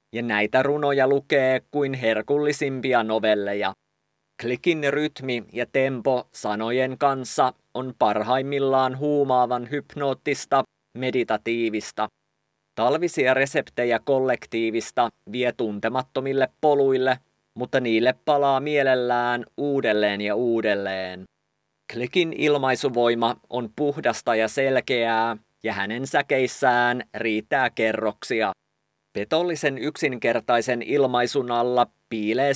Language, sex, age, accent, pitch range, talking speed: English, male, 30-49, Finnish, 110-135 Hz, 85 wpm